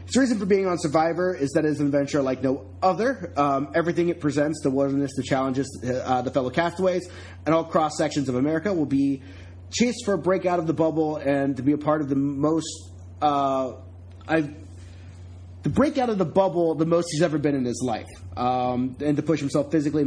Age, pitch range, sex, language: 30-49, 125-170 Hz, male, English